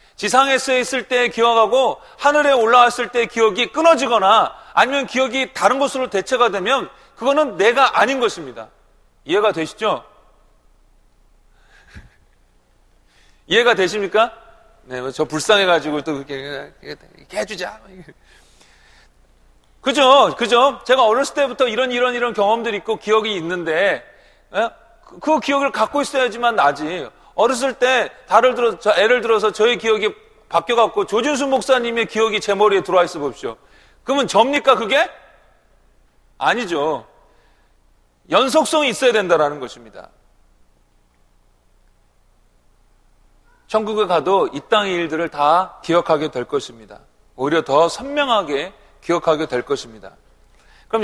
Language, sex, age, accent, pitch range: Korean, male, 40-59, native, 170-260 Hz